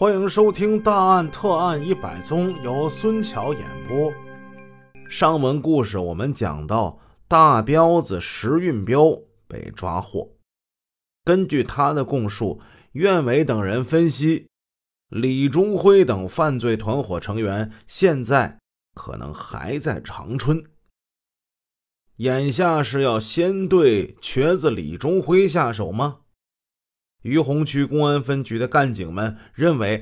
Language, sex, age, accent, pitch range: Chinese, male, 30-49, native, 105-160 Hz